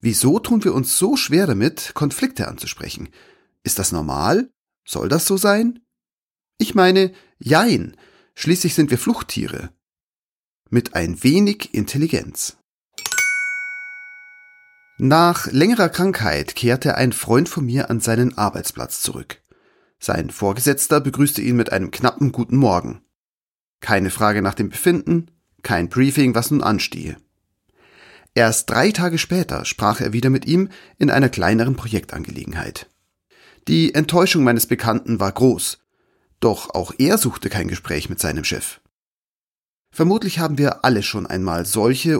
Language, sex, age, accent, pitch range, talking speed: German, male, 40-59, German, 105-170 Hz, 130 wpm